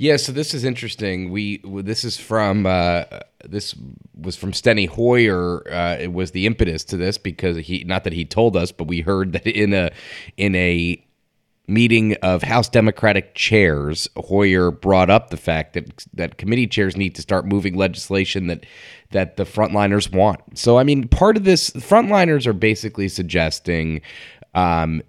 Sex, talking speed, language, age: male, 175 wpm, English, 30-49